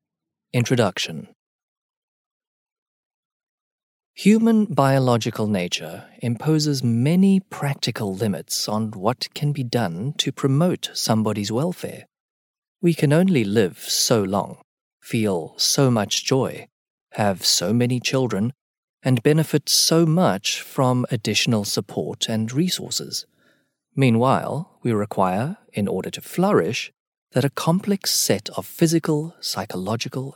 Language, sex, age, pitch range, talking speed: English, male, 30-49, 115-180 Hz, 105 wpm